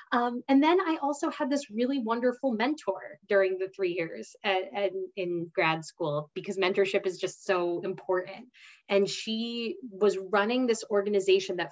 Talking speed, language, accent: 155 wpm, English, American